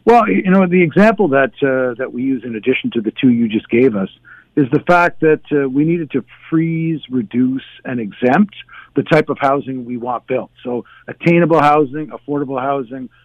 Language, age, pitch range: English, 50-69, 135-160 Hz